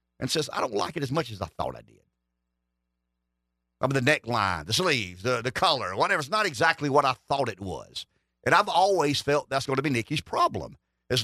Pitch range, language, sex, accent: 120-190 Hz, English, male, American